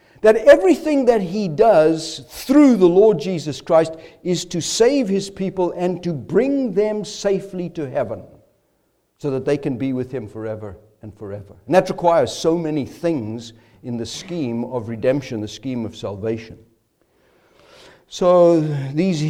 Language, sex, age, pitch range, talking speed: English, male, 60-79, 125-185 Hz, 150 wpm